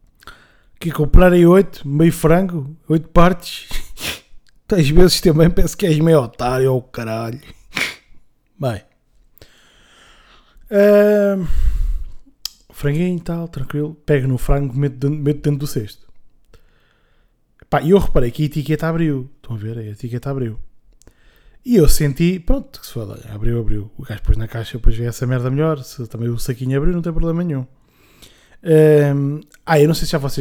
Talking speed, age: 165 wpm, 20-39